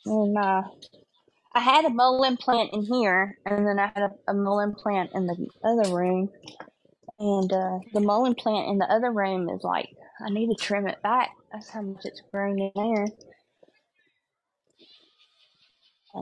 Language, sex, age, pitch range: Chinese, female, 20-39, 190-220 Hz